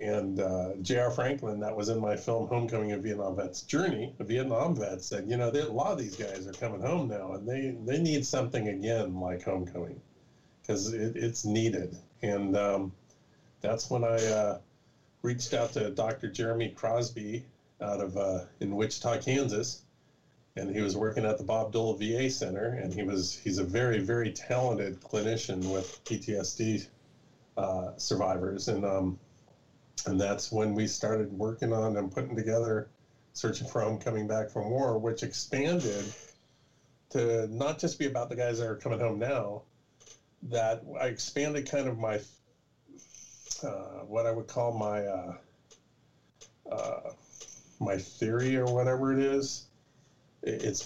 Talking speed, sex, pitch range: 160 wpm, male, 105-125 Hz